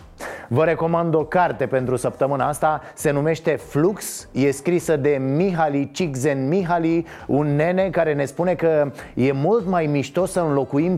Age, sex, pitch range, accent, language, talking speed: 30-49, male, 130-170 Hz, native, Romanian, 155 wpm